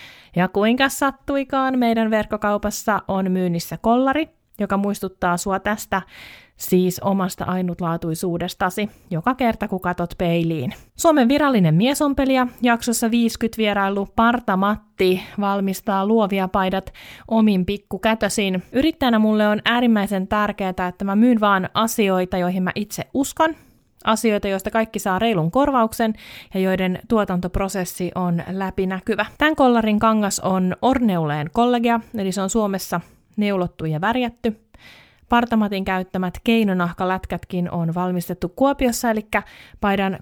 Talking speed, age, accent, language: 115 wpm, 20-39, native, Finnish